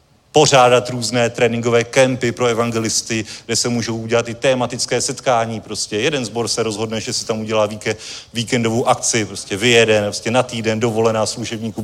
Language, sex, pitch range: Czech, male, 115-145 Hz